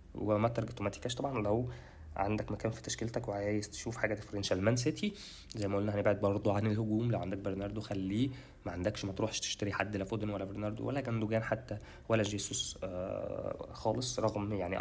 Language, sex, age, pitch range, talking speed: Arabic, male, 20-39, 100-120 Hz, 175 wpm